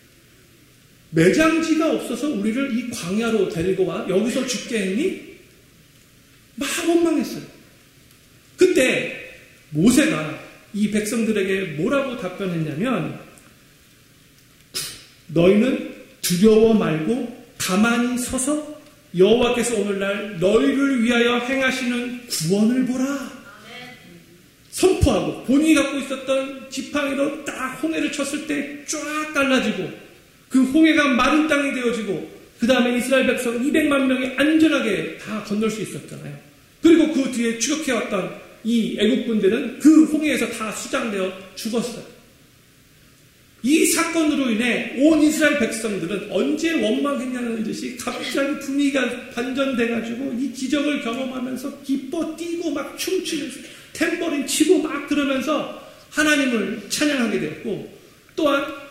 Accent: native